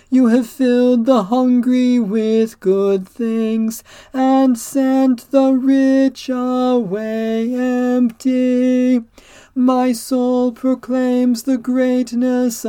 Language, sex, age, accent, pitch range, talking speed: English, male, 40-59, American, 225-255 Hz, 90 wpm